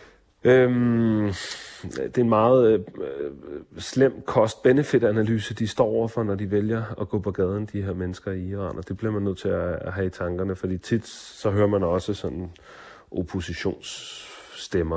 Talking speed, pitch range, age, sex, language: 170 wpm, 95-105 Hz, 30-49, male, Danish